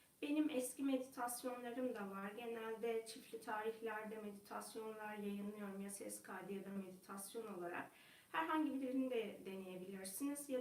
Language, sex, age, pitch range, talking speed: Turkish, female, 30-49, 210-250 Hz, 125 wpm